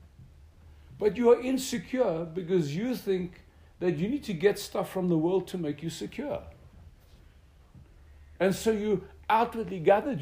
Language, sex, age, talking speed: English, male, 60-79, 145 wpm